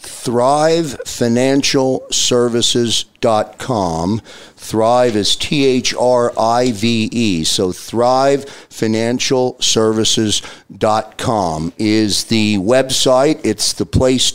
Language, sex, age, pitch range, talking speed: English, male, 50-69, 110-130 Hz, 50 wpm